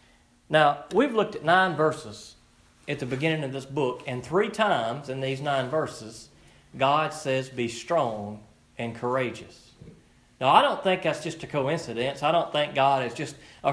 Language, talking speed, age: English, 175 wpm, 40-59